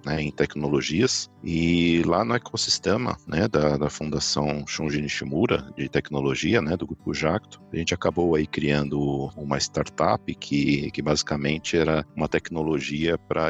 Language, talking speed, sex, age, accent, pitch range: Portuguese, 145 wpm, male, 50-69, Brazilian, 75-85 Hz